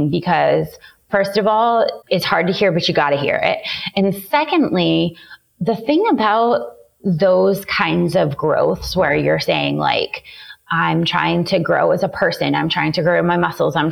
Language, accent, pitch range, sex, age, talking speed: English, American, 175-235 Hz, female, 20-39, 175 wpm